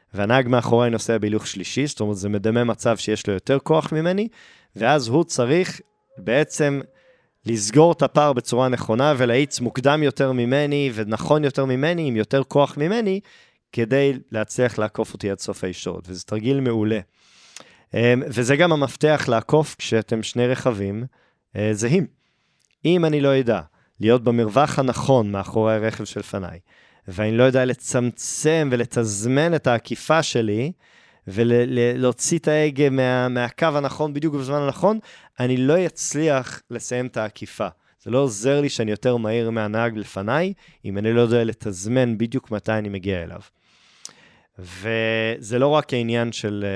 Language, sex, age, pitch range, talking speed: Hebrew, male, 20-39, 110-140 Hz, 140 wpm